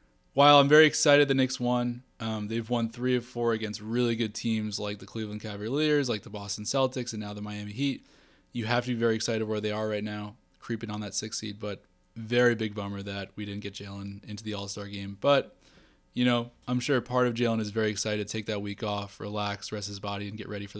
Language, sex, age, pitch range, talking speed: English, male, 20-39, 105-125 Hz, 240 wpm